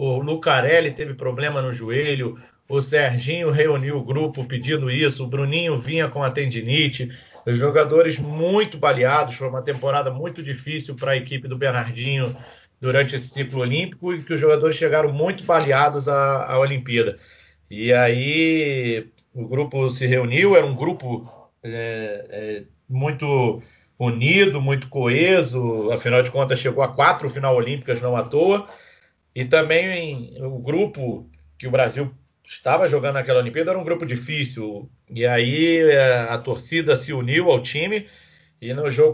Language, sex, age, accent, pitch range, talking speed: Portuguese, male, 40-59, Brazilian, 125-150 Hz, 150 wpm